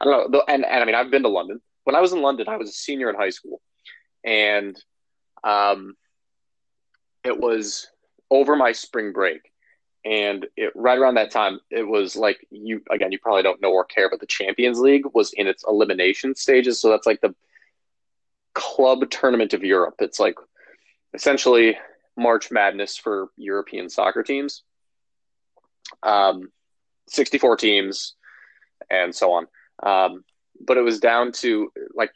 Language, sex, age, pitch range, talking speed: English, male, 20-39, 105-165 Hz, 165 wpm